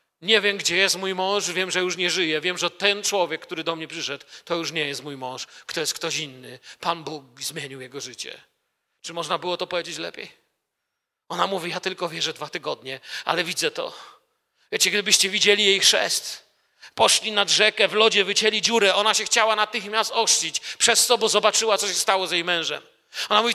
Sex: male